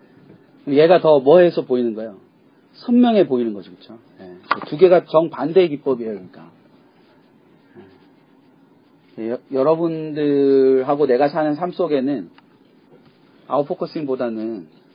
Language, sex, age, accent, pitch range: Korean, male, 40-59, native, 130-180 Hz